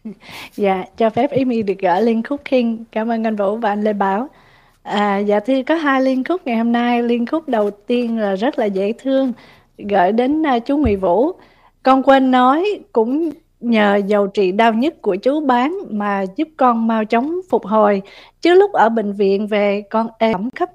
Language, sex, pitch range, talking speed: Vietnamese, female, 205-255 Hz, 200 wpm